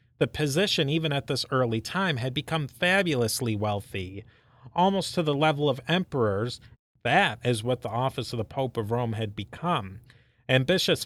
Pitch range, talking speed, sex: 115-170 Hz, 165 wpm, male